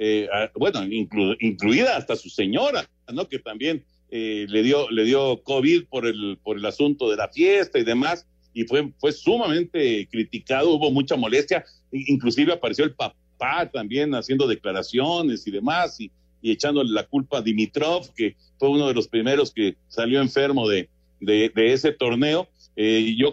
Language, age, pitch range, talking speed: Spanish, 50-69, 110-170 Hz, 170 wpm